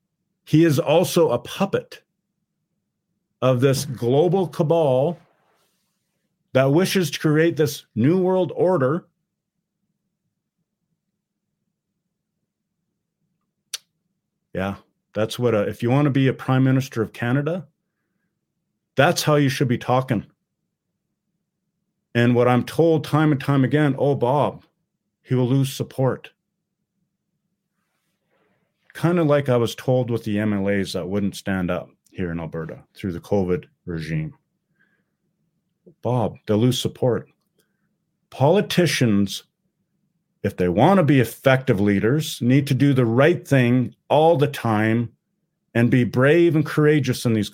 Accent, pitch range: American, 125-180 Hz